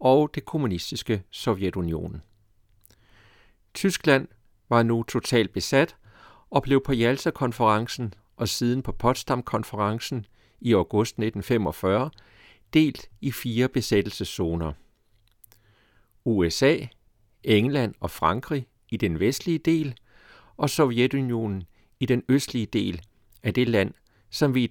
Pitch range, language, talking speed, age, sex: 100-125 Hz, Danish, 105 wpm, 60-79, male